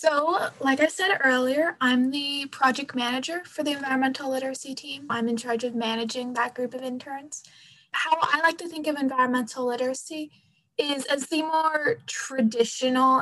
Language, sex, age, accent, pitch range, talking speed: English, female, 20-39, American, 235-280 Hz, 165 wpm